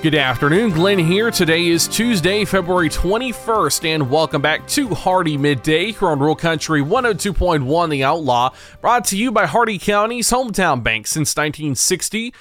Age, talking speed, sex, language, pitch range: 20-39, 155 wpm, male, English, 150-210 Hz